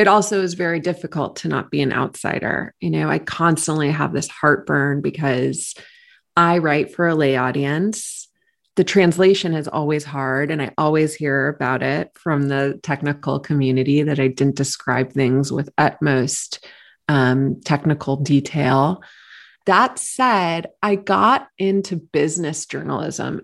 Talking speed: 145 wpm